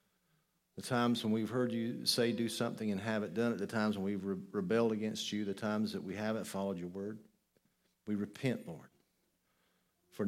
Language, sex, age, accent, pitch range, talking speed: English, male, 50-69, American, 100-125 Hz, 195 wpm